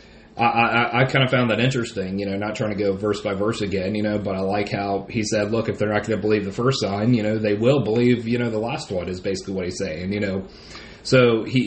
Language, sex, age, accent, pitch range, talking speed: English, male, 30-49, American, 105-125 Hz, 285 wpm